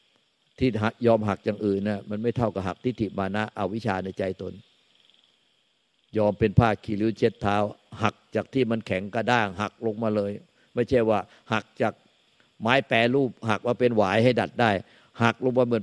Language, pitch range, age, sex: Thai, 100-115 Hz, 50-69, male